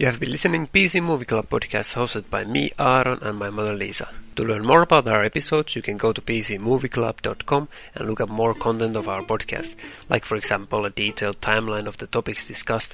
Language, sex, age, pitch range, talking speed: English, male, 30-49, 105-125 Hz, 215 wpm